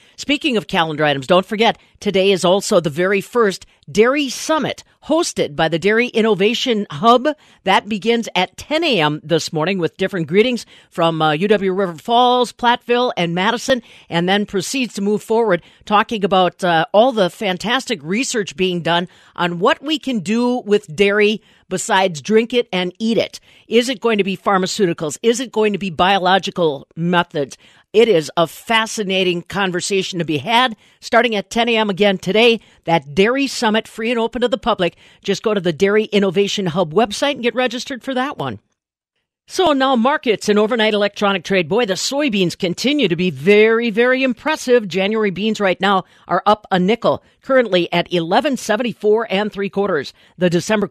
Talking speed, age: 175 wpm, 50-69